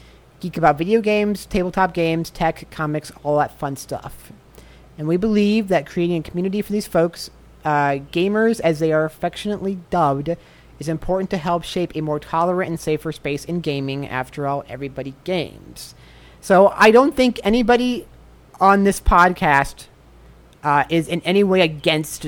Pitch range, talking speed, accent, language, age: 140-185 Hz, 160 wpm, American, English, 30-49